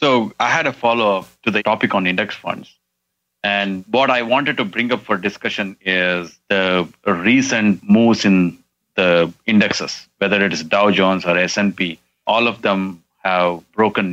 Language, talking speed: English, 165 wpm